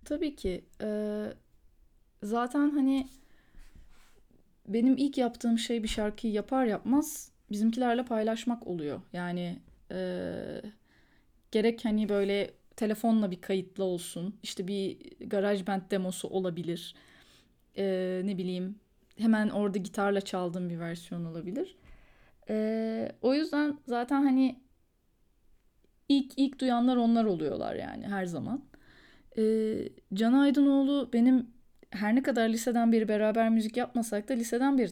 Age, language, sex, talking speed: 10-29, Turkish, female, 115 wpm